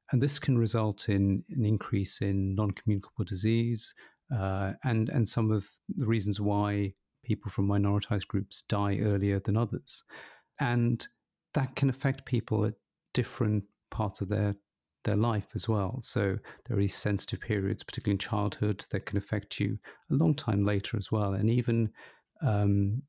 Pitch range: 100-115 Hz